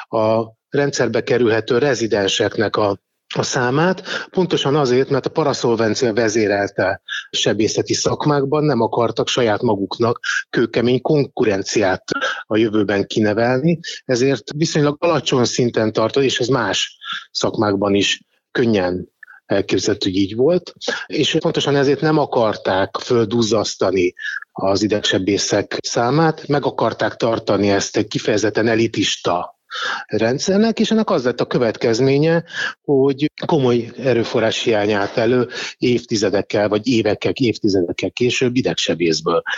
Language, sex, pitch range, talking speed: Hungarian, male, 110-155 Hz, 110 wpm